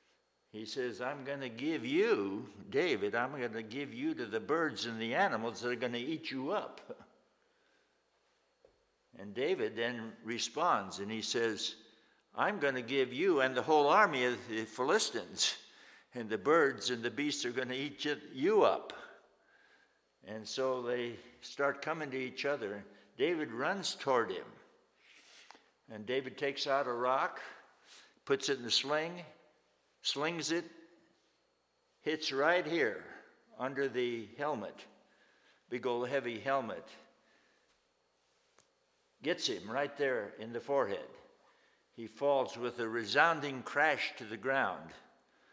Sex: male